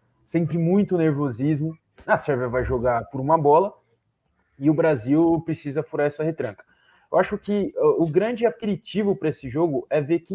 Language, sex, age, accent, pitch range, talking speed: Portuguese, male, 20-39, Brazilian, 125-160 Hz, 160 wpm